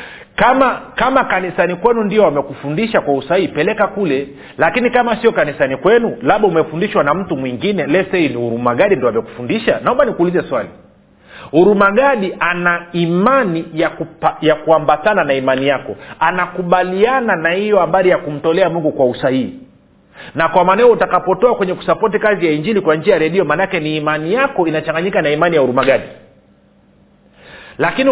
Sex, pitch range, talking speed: male, 155-200 Hz, 155 wpm